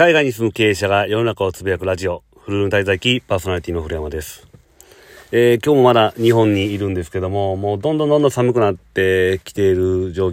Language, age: Japanese, 40-59